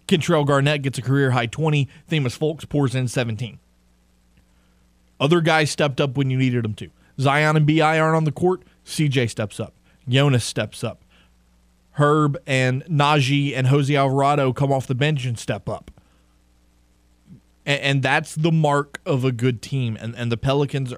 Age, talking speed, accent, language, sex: 20-39, 170 wpm, American, English, male